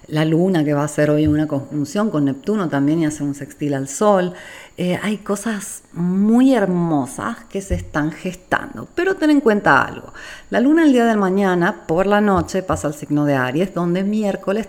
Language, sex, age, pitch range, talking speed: Spanish, female, 40-59, 150-200 Hz, 195 wpm